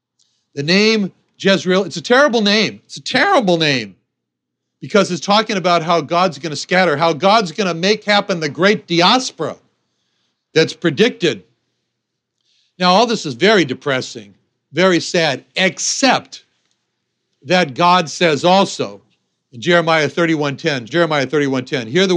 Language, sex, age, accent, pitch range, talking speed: English, male, 60-79, American, 145-195 Hz, 140 wpm